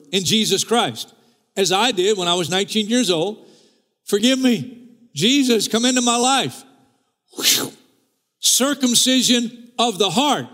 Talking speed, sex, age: 130 wpm, male, 50-69